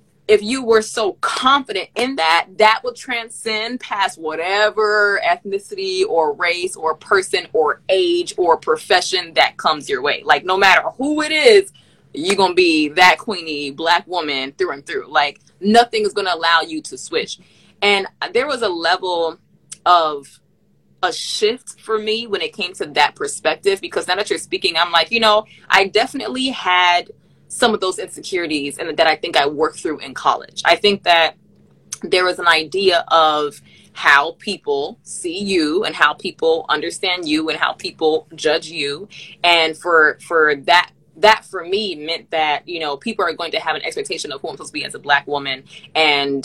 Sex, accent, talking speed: female, American, 185 wpm